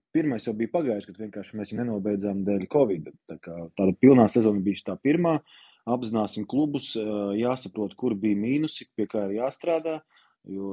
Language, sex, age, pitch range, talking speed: English, male, 30-49, 100-130 Hz, 170 wpm